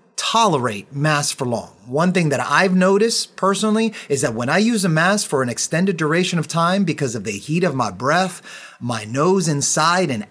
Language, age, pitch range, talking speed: English, 30-49, 135-190 Hz, 200 wpm